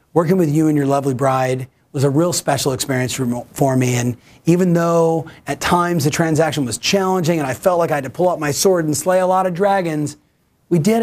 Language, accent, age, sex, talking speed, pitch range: English, American, 30-49, male, 230 wpm, 140-175 Hz